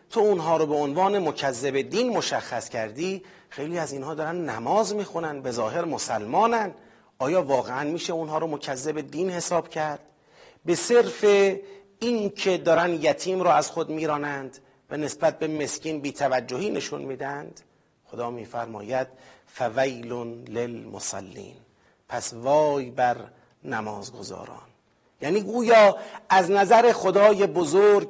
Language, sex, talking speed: Persian, male, 125 wpm